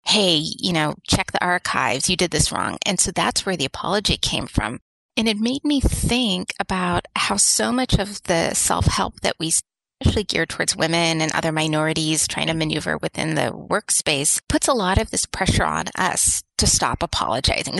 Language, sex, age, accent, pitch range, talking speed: English, female, 30-49, American, 160-205 Hz, 190 wpm